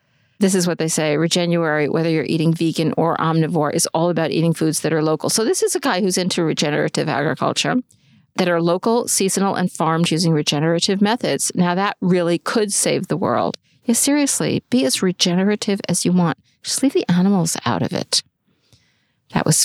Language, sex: English, female